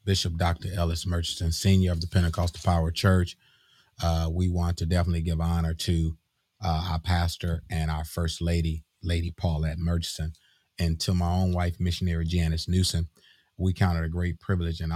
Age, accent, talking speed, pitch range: 30-49, American, 175 wpm, 85-95 Hz